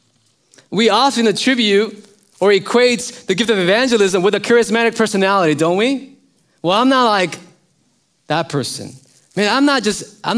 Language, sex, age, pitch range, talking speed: English, male, 20-39, 180-245 Hz, 155 wpm